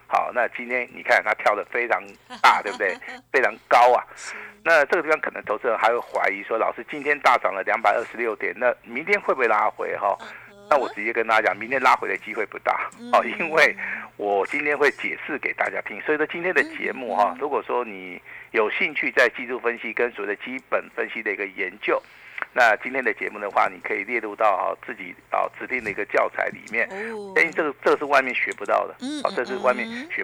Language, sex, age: Chinese, male, 50-69